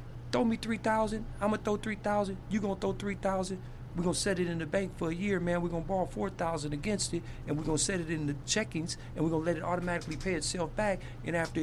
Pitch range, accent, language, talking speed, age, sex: 125-180 Hz, American, English, 290 wpm, 50-69, male